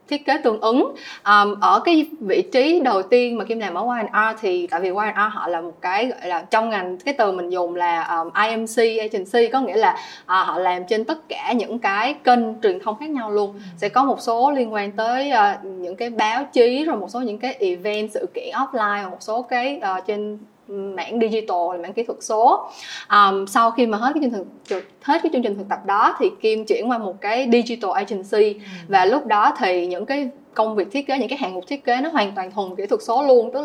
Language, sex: Vietnamese, female